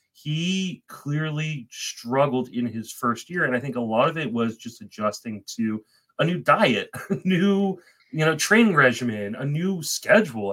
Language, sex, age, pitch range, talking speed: English, male, 30-49, 115-160 Hz, 170 wpm